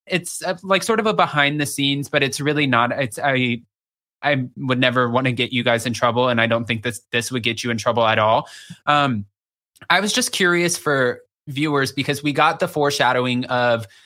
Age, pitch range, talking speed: 20-39, 125-150 Hz, 215 wpm